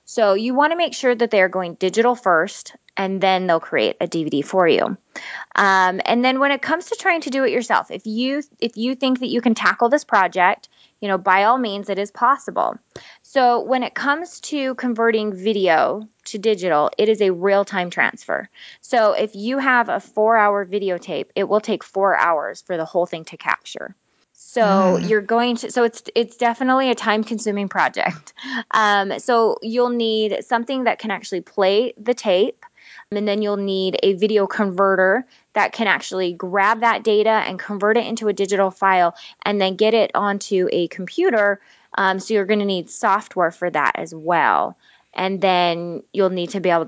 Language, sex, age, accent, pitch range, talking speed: English, female, 20-39, American, 190-235 Hz, 190 wpm